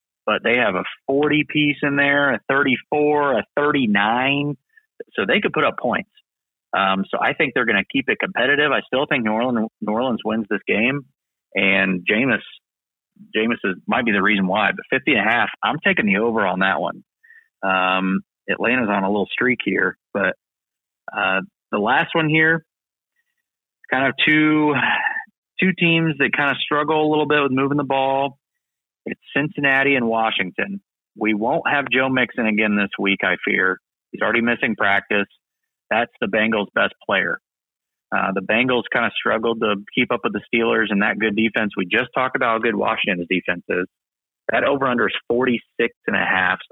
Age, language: 30-49, English